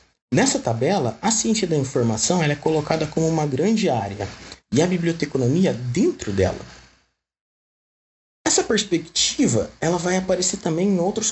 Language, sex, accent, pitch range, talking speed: Portuguese, male, Brazilian, 115-180 Hz, 125 wpm